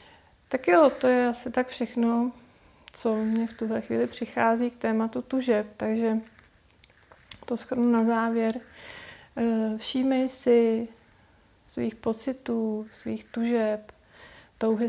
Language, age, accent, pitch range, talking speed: Czech, 30-49, native, 205-230 Hz, 115 wpm